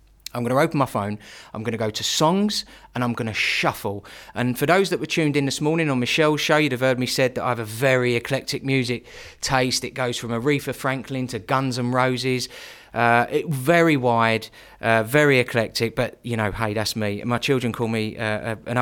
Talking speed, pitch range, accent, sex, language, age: 225 wpm, 120-165 Hz, British, male, English, 30-49